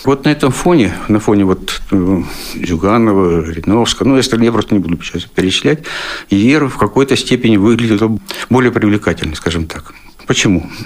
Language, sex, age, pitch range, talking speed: Russian, male, 60-79, 90-115 Hz, 160 wpm